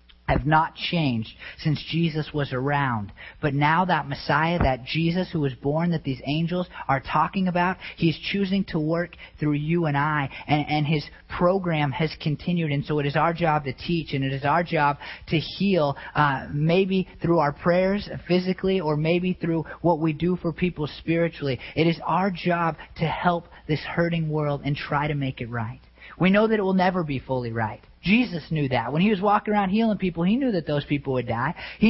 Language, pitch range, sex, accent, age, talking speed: English, 145-180 Hz, male, American, 30-49, 205 wpm